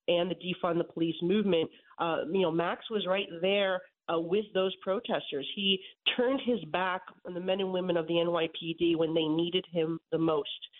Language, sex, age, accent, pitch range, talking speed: English, female, 40-59, American, 175-205 Hz, 195 wpm